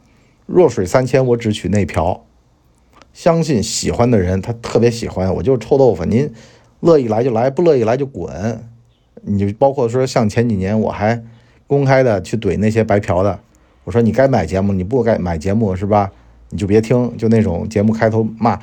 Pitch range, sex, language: 95-130 Hz, male, Chinese